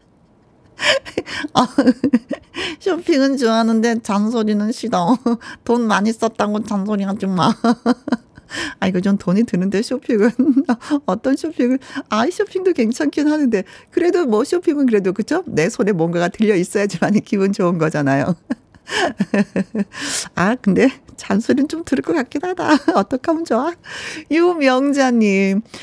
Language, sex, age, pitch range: Korean, female, 40-59, 190-265 Hz